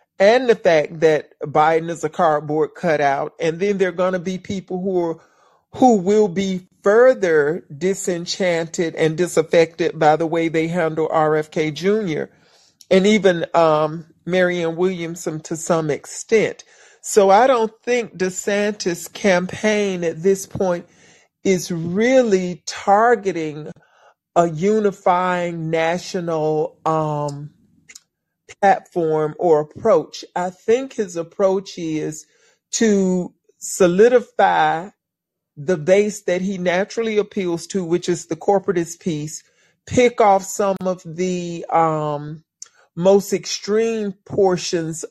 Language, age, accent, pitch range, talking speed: English, 40-59, American, 160-195 Hz, 115 wpm